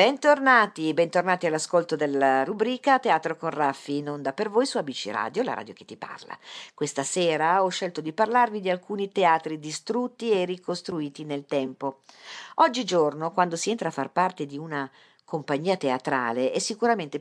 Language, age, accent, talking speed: Italian, 50-69, native, 165 wpm